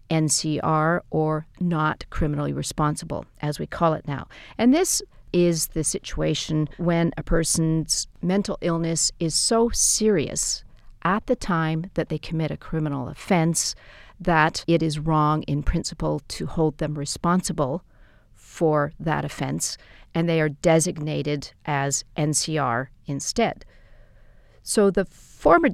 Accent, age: American, 50-69